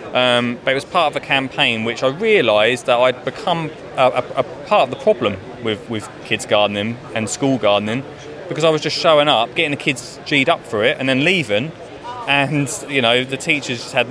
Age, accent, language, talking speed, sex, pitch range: 20-39, British, English, 215 wpm, male, 120-145 Hz